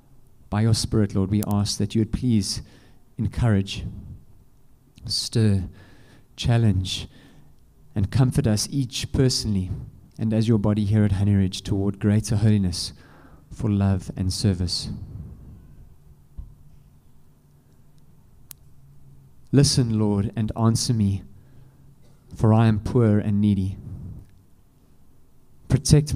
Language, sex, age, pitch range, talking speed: English, male, 30-49, 100-125 Hz, 105 wpm